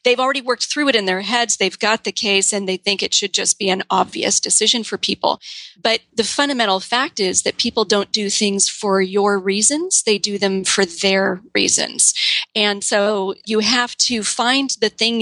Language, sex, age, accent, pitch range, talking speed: English, female, 40-59, American, 195-230 Hz, 200 wpm